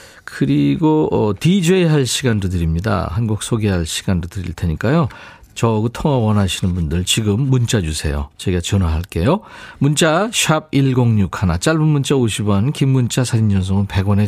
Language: Korean